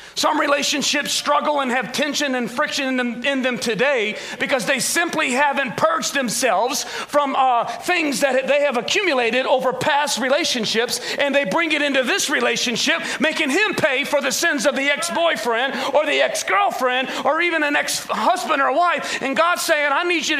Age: 40-59